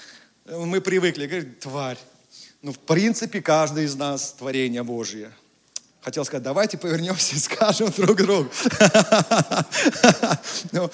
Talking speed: 115 wpm